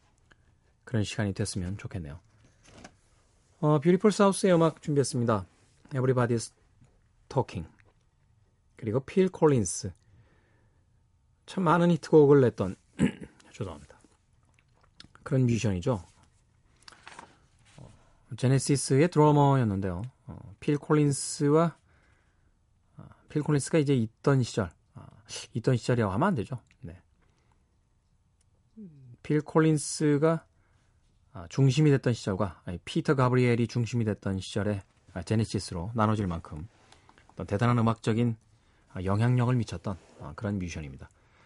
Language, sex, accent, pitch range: Korean, male, native, 100-130 Hz